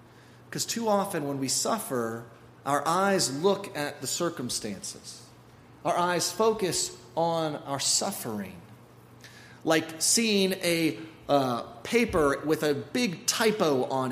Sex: male